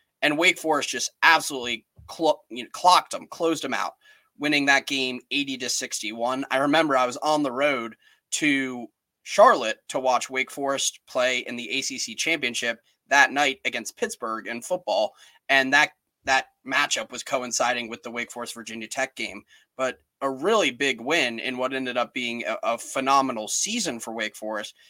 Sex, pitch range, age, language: male, 120-145 Hz, 20-39, English